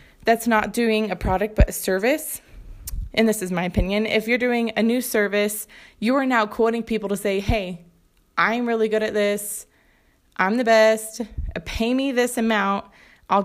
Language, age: English, 20-39